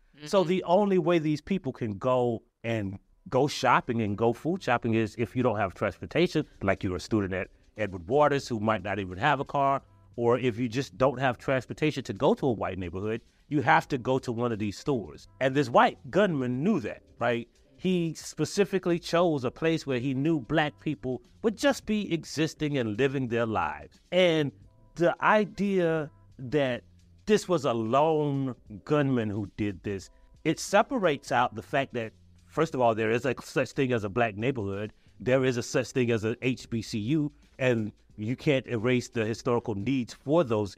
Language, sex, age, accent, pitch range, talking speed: English, male, 30-49, American, 110-150 Hz, 190 wpm